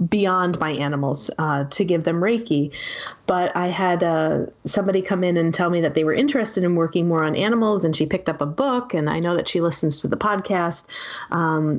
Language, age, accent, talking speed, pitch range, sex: English, 30-49, American, 220 wpm, 160-195 Hz, female